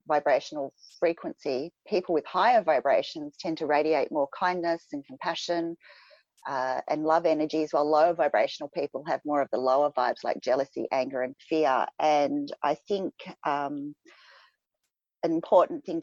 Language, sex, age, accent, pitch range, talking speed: English, female, 40-59, Australian, 135-165 Hz, 145 wpm